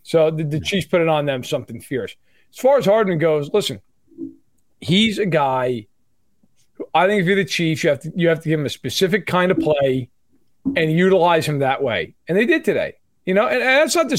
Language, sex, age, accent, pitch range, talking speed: English, male, 40-59, American, 155-200 Hz, 235 wpm